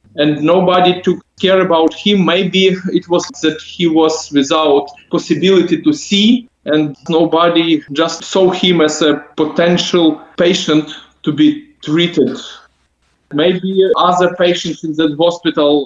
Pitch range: 155-185 Hz